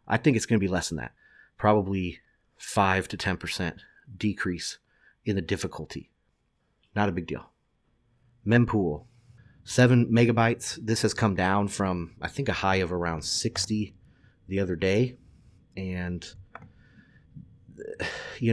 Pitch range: 90-110 Hz